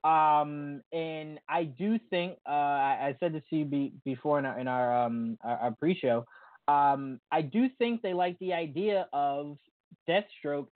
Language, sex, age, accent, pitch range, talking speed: English, male, 20-39, American, 140-180 Hz, 180 wpm